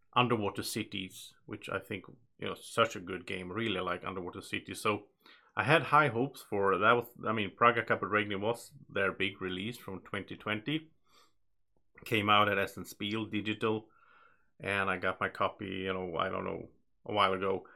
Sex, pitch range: male, 100-125 Hz